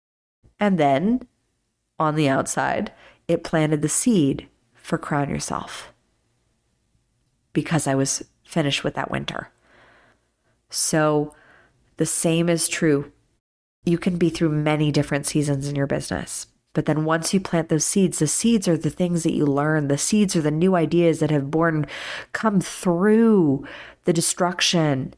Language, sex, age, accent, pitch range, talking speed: English, female, 30-49, American, 145-180 Hz, 150 wpm